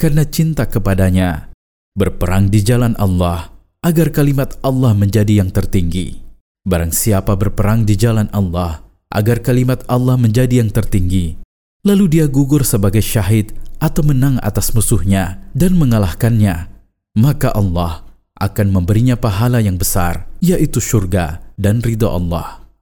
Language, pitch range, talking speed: Indonesian, 95-125 Hz, 125 wpm